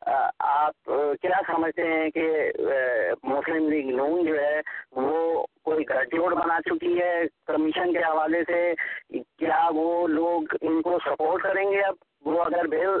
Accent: Indian